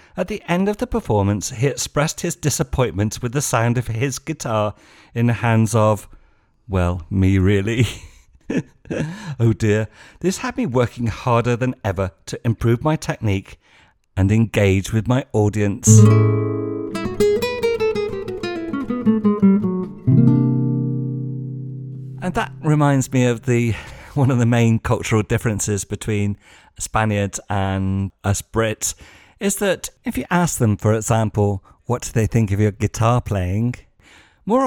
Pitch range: 105-155 Hz